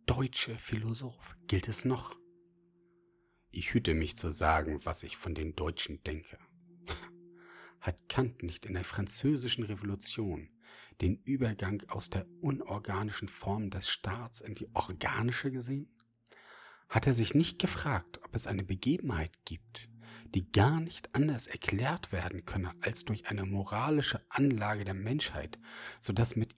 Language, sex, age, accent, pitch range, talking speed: German, male, 40-59, German, 95-150 Hz, 140 wpm